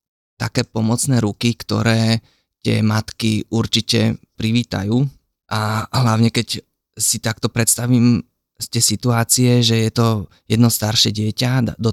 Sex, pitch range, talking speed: male, 110-115 Hz, 115 wpm